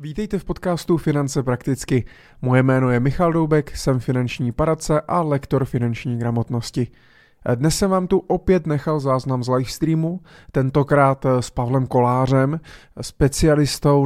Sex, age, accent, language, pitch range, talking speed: male, 30-49, native, Czech, 120-145 Hz, 130 wpm